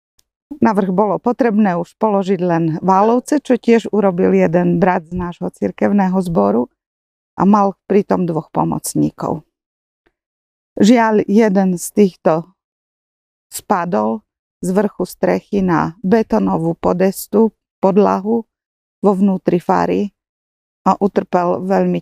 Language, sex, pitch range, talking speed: Slovak, female, 175-210 Hz, 105 wpm